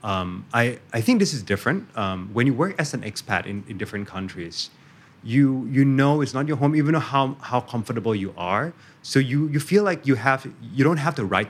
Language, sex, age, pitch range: Thai, male, 30-49, 100-135 Hz